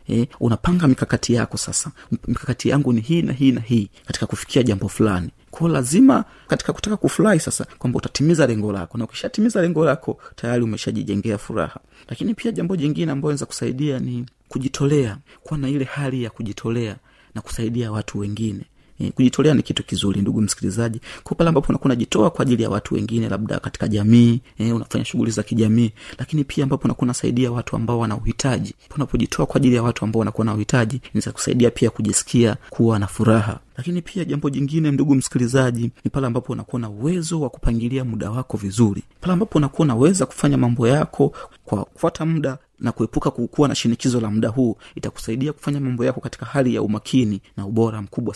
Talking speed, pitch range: 180 wpm, 110-140 Hz